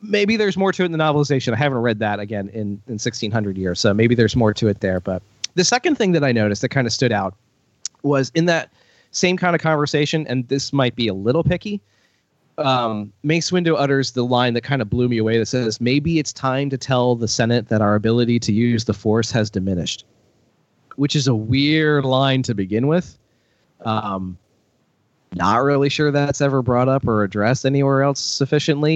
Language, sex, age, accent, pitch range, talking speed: English, male, 30-49, American, 110-145 Hz, 210 wpm